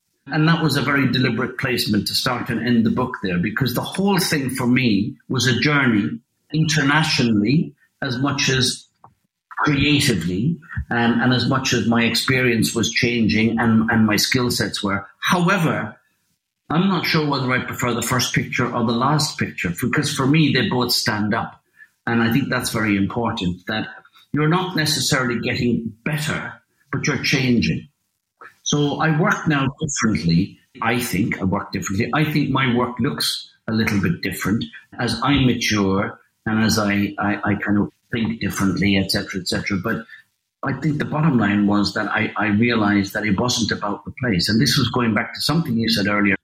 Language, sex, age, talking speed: English, male, 50-69, 180 wpm